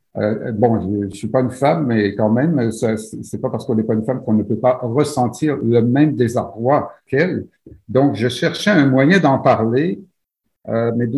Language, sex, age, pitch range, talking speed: French, male, 50-69, 110-150 Hz, 205 wpm